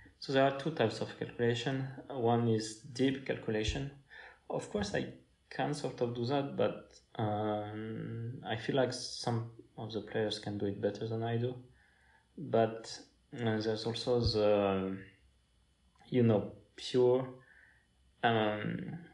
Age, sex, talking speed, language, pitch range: 20-39, male, 140 wpm, English, 100-115 Hz